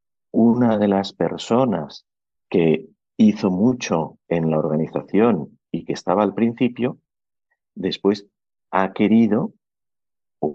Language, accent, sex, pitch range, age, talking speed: Spanish, Spanish, male, 90-120 Hz, 50-69, 110 wpm